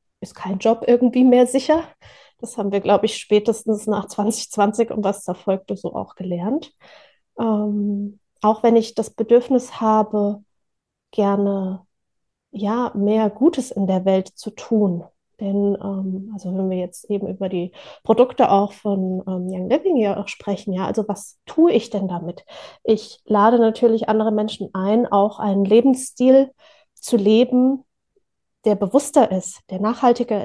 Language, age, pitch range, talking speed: German, 30-49, 195-230 Hz, 150 wpm